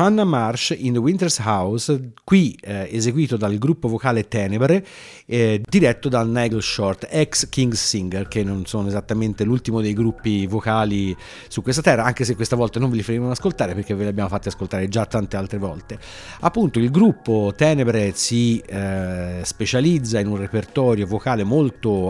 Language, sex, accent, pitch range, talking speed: Italian, male, native, 100-130 Hz, 170 wpm